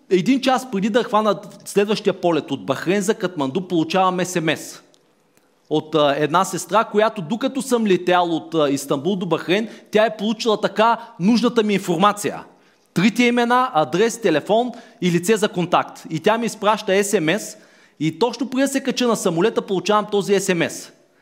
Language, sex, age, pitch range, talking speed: Bulgarian, male, 40-59, 185-235 Hz, 155 wpm